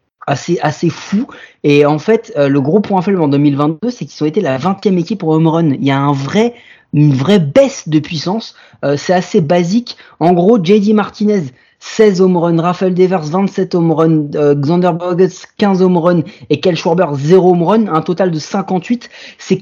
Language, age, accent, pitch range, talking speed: French, 30-49, French, 145-185 Hz, 200 wpm